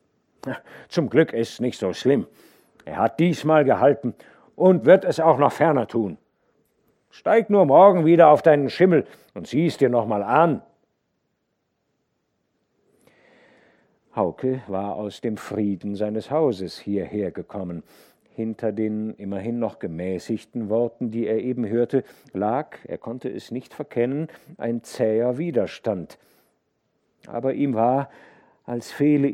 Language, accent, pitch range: German, German, 110-145 Hz